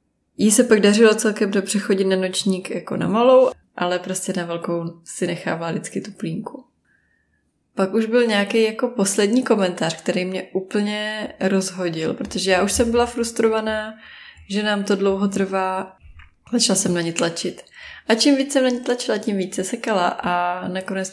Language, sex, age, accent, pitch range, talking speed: Czech, female, 20-39, native, 180-220 Hz, 175 wpm